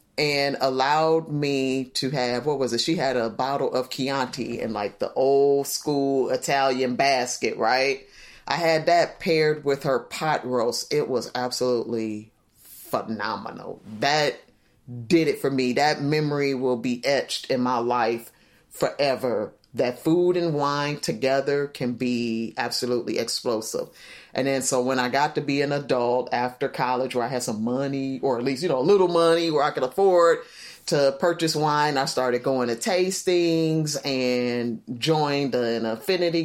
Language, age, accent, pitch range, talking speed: English, 30-49, American, 125-165 Hz, 160 wpm